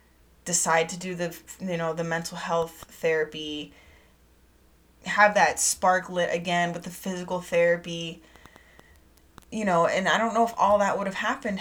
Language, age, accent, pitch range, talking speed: English, 20-39, American, 145-175 Hz, 160 wpm